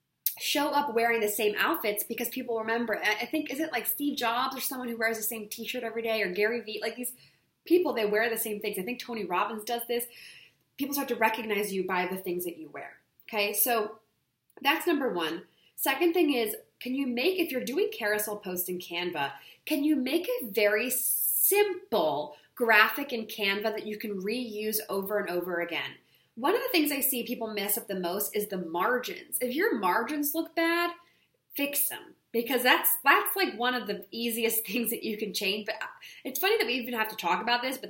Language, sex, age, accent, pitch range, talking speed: English, female, 20-39, American, 205-280 Hz, 210 wpm